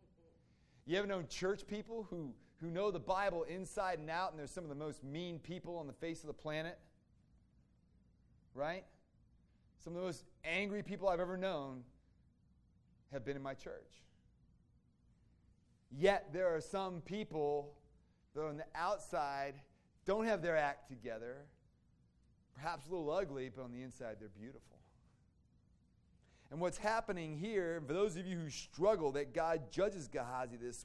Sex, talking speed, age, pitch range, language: male, 160 wpm, 30-49, 130-175 Hz, English